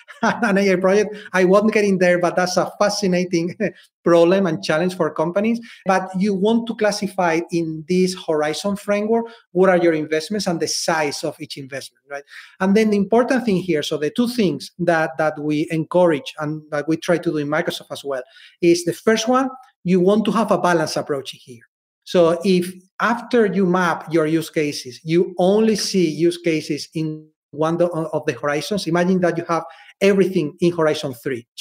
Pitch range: 155-200 Hz